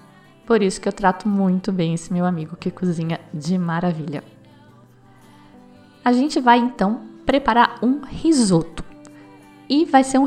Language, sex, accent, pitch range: Portuguese, female, Brazilian, 195-255 Hz